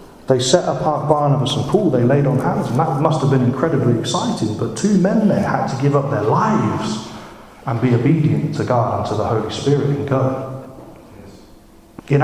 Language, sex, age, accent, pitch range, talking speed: English, male, 40-59, British, 120-160 Hz, 195 wpm